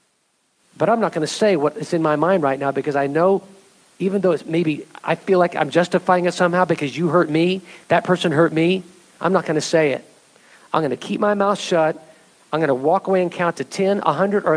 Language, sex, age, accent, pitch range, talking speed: English, male, 50-69, American, 155-205 Hz, 225 wpm